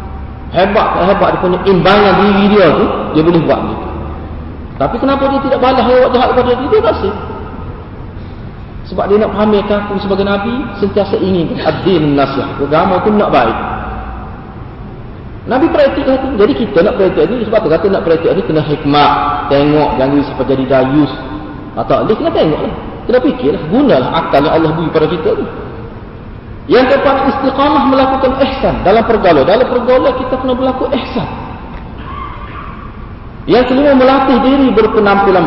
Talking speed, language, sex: 165 wpm, Malay, male